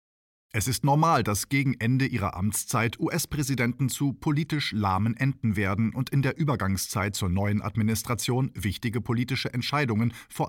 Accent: German